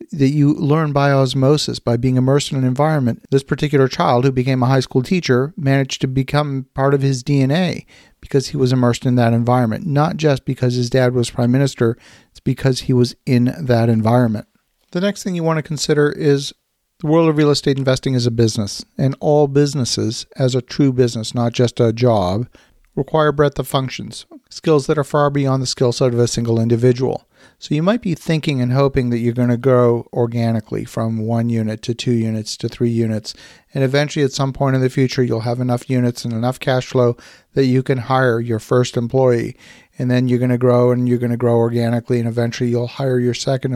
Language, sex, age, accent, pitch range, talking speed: English, male, 50-69, American, 120-145 Hz, 215 wpm